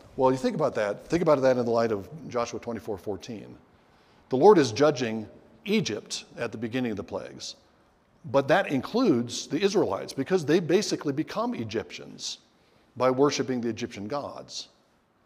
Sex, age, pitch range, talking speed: male, 60-79, 115-145 Hz, 160 wpm